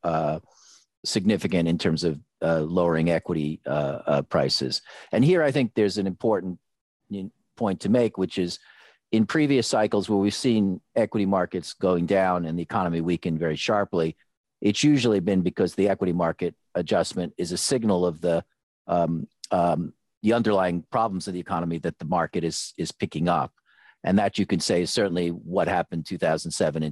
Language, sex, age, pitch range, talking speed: English, male, 50-69, 85-105 Hz, 170 wpm